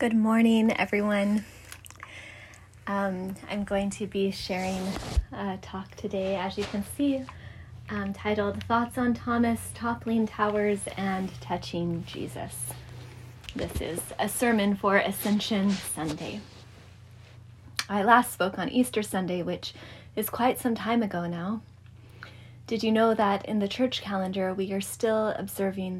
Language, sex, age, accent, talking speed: English, female, 20-39, American, 135 wpm